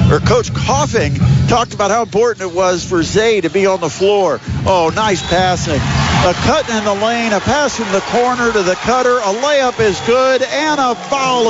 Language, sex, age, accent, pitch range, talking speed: English, male, 50-69, American, 150-210 Hz, 205 wpm